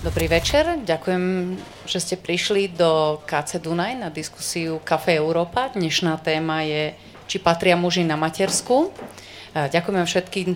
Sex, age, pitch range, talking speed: female, 30-49, 165-195 Hz, 130 wpm